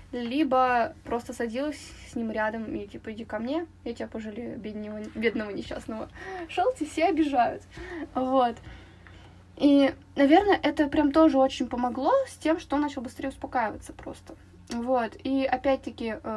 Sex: female